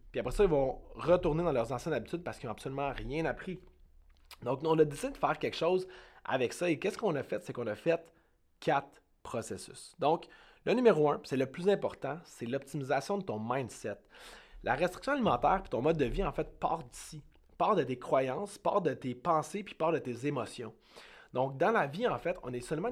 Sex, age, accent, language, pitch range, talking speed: male, 30-49, Canadian, French, 125-175 Hz, 220 wpm